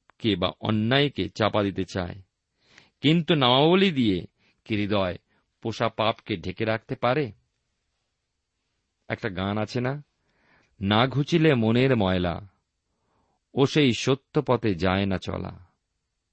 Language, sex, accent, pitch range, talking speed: Bengali, male, native, 95-130 Hz, 110 wpm